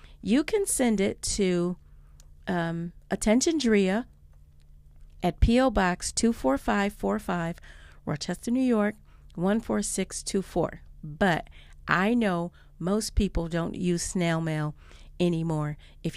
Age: 40-59